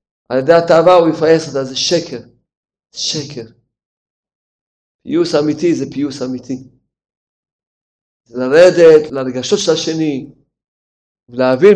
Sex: male